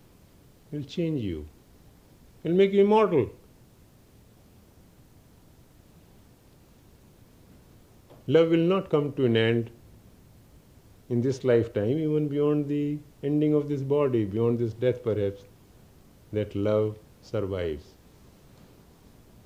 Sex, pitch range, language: male, 100-140 Hz, English